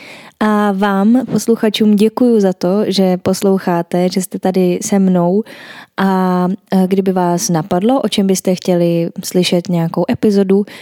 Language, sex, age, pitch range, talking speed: Czech, female, 20-39, 180-220 Hz, 135 wpm